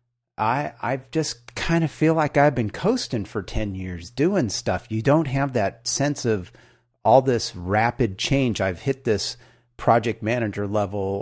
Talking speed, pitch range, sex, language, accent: 165 wpm, 105-125 Hz, male, English, American